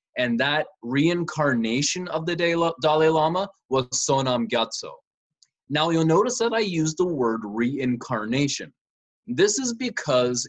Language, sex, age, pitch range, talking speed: English, male, 20-39, 115-160 Hz, 125 wpm